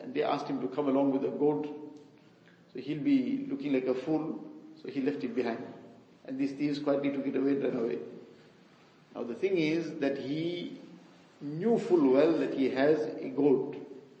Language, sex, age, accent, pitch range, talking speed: English, male, 50-69, Indian, 135-155 Hz, 190 wpm